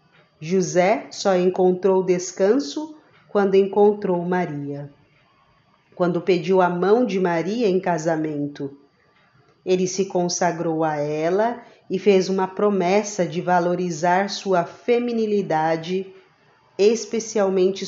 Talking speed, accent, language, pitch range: 95 wpm, Brazilian, Portuguese, 170-200 Hz